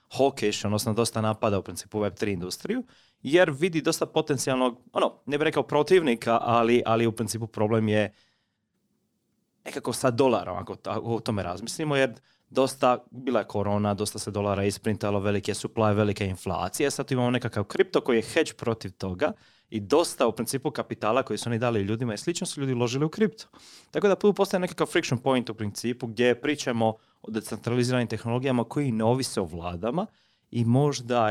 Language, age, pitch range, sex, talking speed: Croatian, 30-49, 105-135 Hz, male, 170 wpm